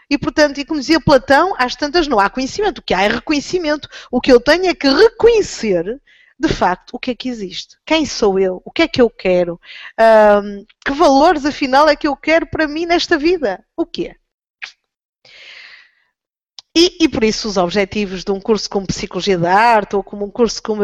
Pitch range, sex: 200-285 Hz, female